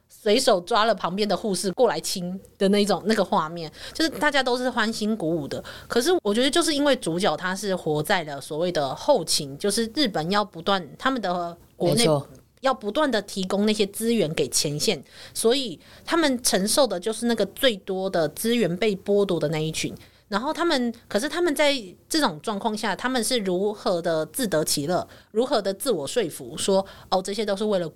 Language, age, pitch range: Chinese, 30-49, 175-245 Hz